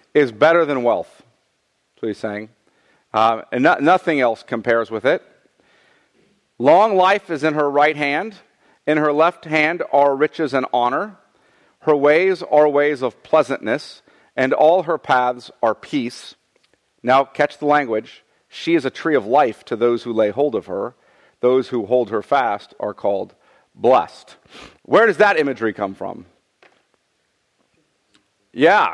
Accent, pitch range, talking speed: American, 125-160 Hz, 150 wpm